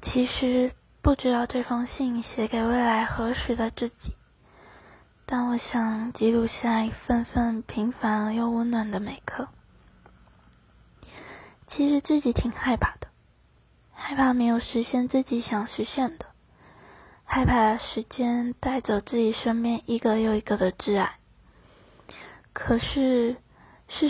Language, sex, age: Chinese, female, 20-39